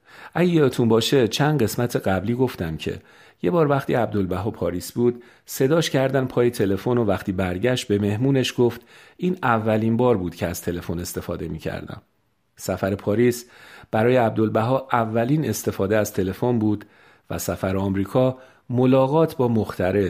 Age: 50-69